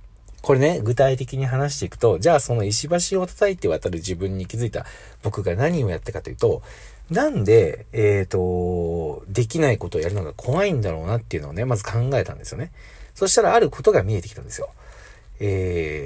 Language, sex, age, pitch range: Japanese, male, 40-59, 100-155 Hz